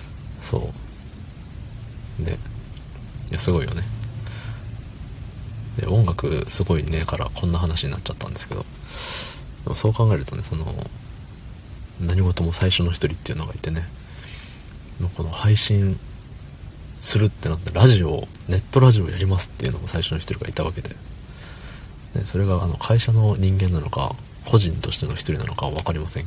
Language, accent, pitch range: Japanese, native, 85-110 Hz